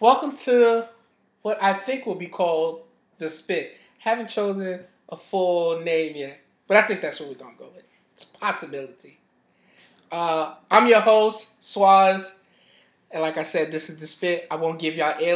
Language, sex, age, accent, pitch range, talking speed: English, male, 20-39, American, 165-210 Hz, 180 wpm